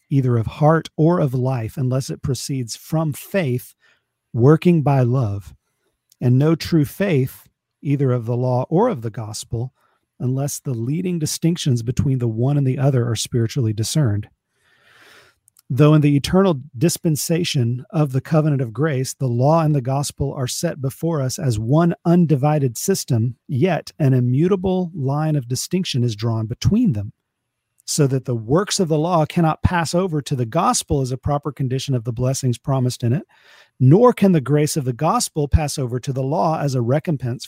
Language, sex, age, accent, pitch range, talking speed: English, male, 40-59, American, 125-155 Hz, 175 wpm